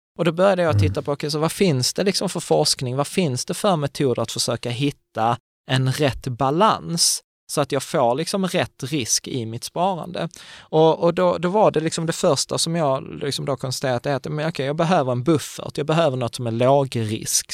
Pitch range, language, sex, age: 115-150 Hz, Swedish, male, 20-39